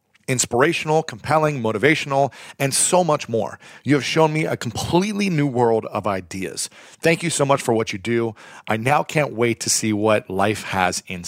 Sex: male